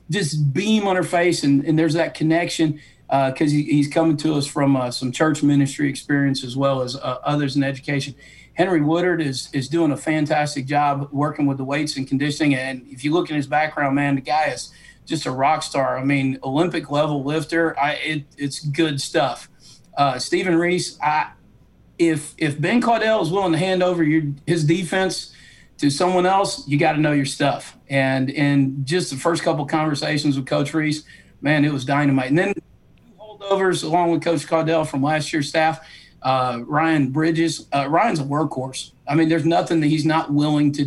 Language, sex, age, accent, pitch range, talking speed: English, male, 40-59, American, 140-165 Hz, 200 wpm